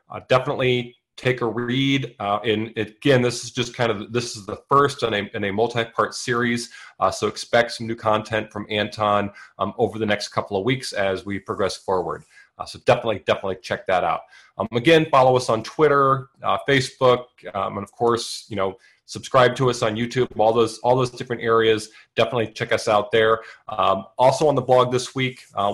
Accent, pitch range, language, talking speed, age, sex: American, 110-130 Hz, English, 200 wpm, 30-49, male